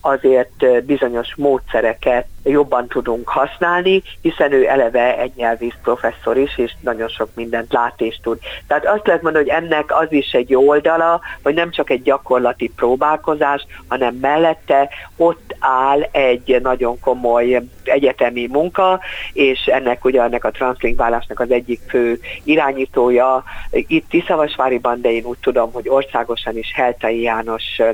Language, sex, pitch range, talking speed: Hungarian, female, 120-145 Hz, 140 wpm